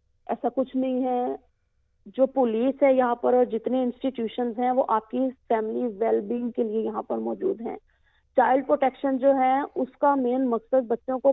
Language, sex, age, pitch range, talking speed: Urdu, female, 40-59, 240-275 Hz, 120 wpm